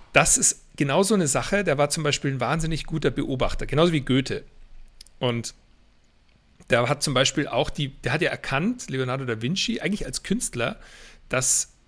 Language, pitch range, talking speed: German, 125-160 Hz, 175 wpm